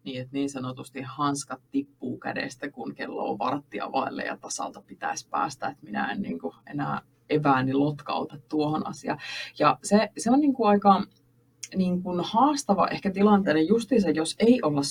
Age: 20-39